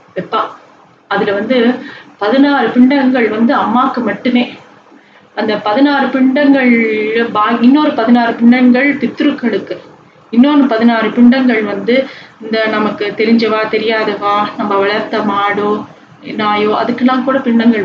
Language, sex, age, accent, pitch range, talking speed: Tamil, female, 30-49, native, 210-255 Hz, 100 wpm